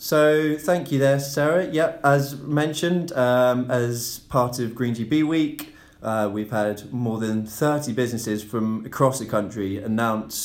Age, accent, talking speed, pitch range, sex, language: 20-39, British, 160 wpm, 110-130 Hz, male, English